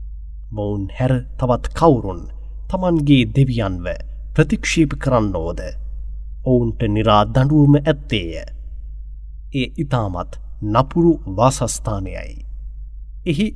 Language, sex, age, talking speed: English, male, 30-49, 75 wpm